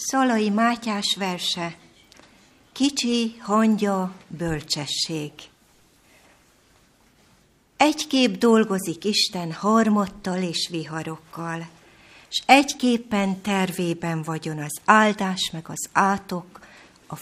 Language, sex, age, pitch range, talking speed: Hungarian, female, 60-79, 160-220 Hz, 75 wpm